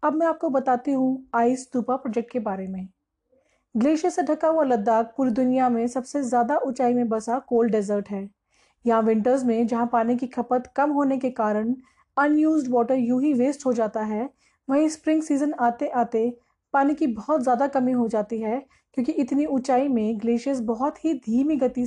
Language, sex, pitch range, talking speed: Hindi, female, 235-295 Hz, 185 wpm